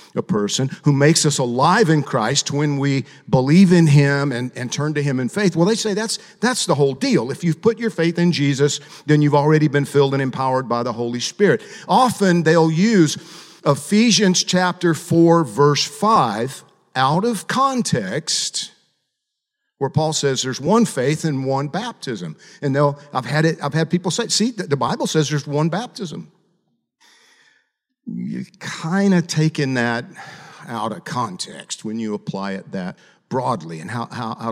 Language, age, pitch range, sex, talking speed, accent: English, 50-69, 140-185 Hz, male, 175 wpm, American